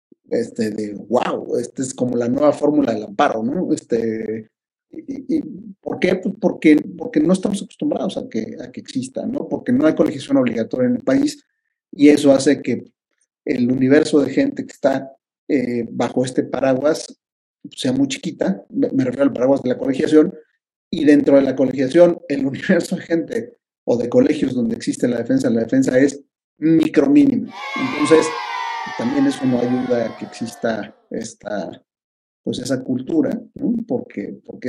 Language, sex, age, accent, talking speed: Spanish, male, 50-69, Mexican, 165 wpm